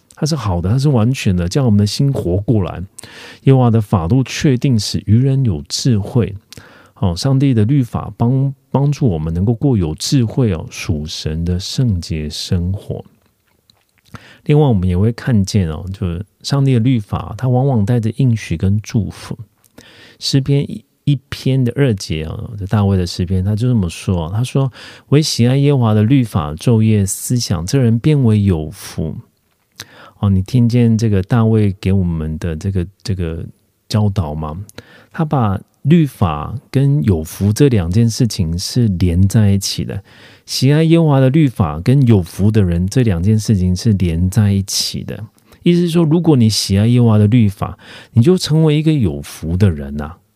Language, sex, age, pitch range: Korean, male, 40-59, 95-130 Hz